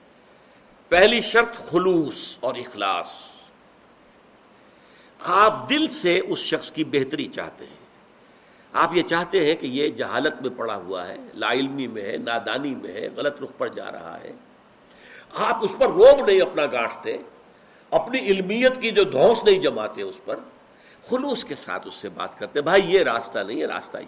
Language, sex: Urdu, male